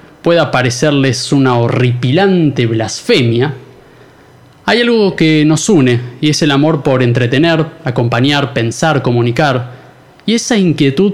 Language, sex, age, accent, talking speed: Spanish, male, 20-39, Argentinian, 120 wpm